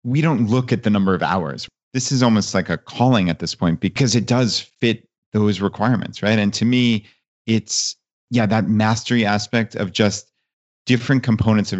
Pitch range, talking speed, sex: 100-120 Hz, 190 wpm, male